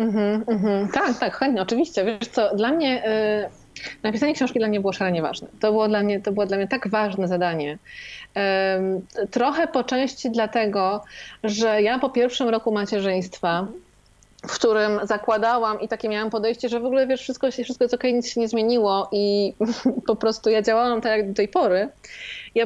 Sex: female